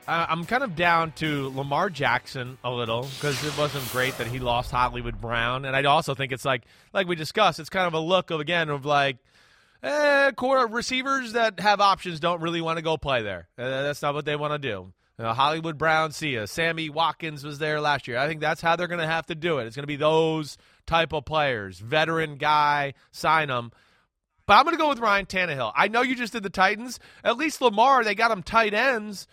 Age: 30-49